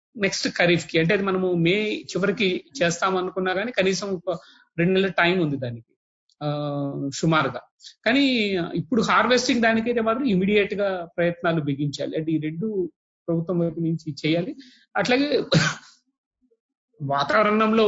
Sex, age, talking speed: male, 30-49, 125 wpm